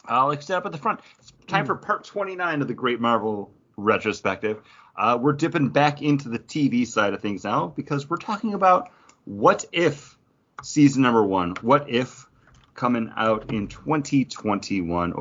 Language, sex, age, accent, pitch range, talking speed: English, male, 30-49, American, 100-145 Hz, 160 wpm